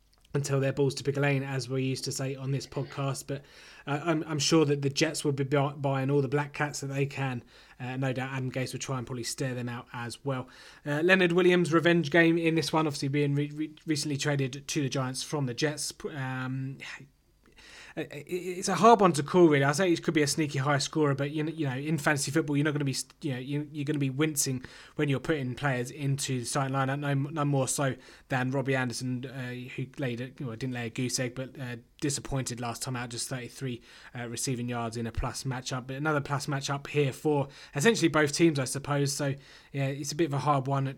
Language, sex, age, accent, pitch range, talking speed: English, male, 20-39, British, 130-150 Hz, 240 wpm